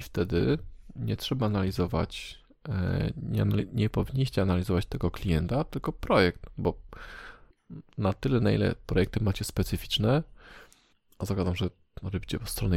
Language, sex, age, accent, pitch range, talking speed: Polish, male, 20-39, native, 90-110 Hz, 120 wpm